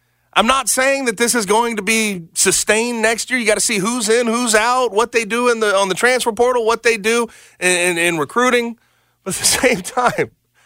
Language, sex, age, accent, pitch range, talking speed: English, male, 30-49, American, 130-195 Hz, 230 wpm